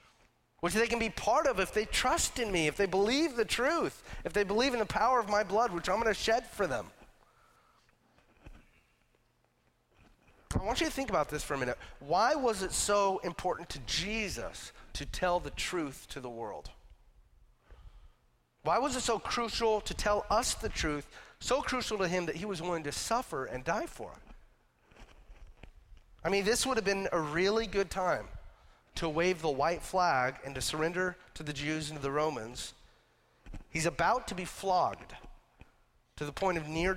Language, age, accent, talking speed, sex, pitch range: English, 30-49, American, 185 wpm, male, 135-195 Hz